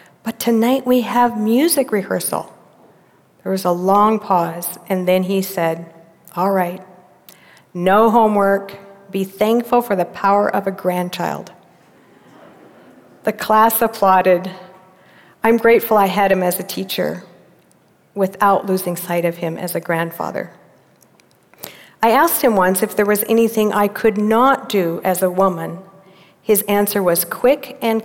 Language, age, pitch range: English, 50-69, 185-225 Hz